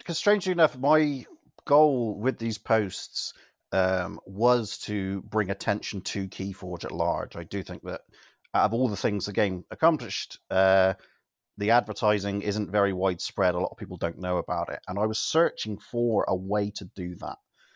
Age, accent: 30-49, British